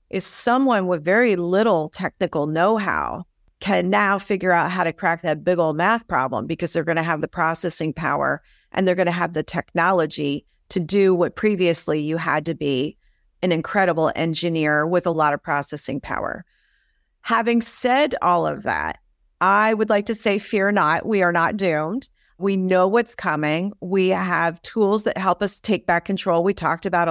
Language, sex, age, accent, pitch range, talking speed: English, female, 40-59, American, 165-200 Hz, 180 wpm